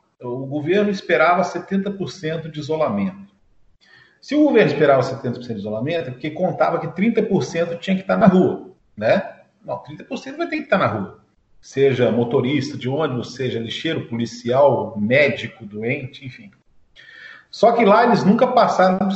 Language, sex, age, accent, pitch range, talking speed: Portuguese, male, 50-69, Brazilian, 130-200 Hz, 155 wpm